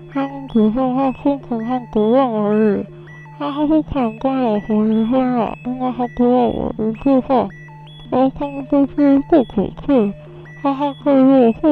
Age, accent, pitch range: 20-39, American, 210-270 Hz